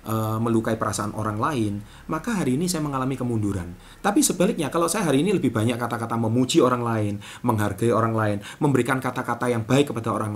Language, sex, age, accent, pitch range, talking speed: Indonesian, male, 30-49, native, 110-170 Hz, 180 wpm